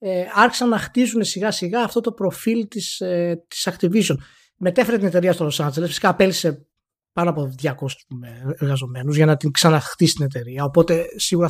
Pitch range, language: 155-205 Hz, Greek